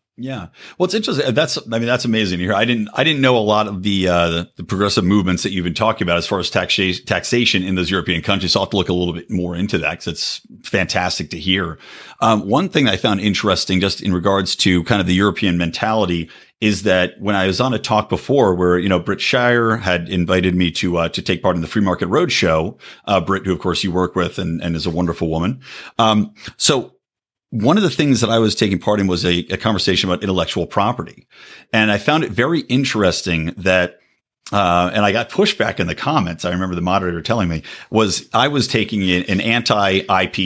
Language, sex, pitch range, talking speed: English, male, 90-110 Hz, 235 wpm